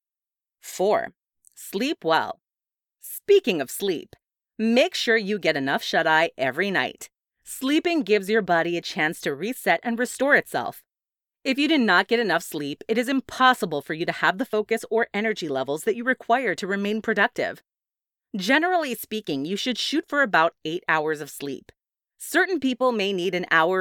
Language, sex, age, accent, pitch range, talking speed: English, female, 30-49, American, 175-260 Hz, 170 wpm